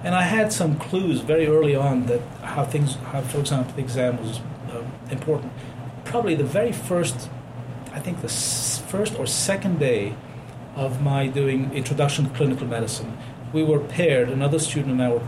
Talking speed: 180 wpm